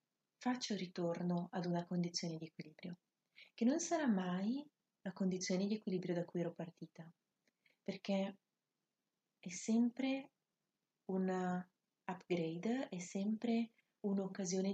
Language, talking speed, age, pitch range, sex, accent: Italian, 110 wpm, 30-49, 170-200 Hz, female, native